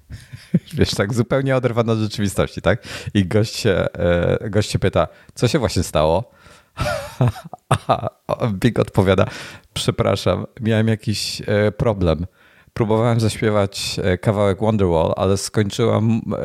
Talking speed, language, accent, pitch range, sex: 105 wpm, Polish, native, 90-115 Hz, male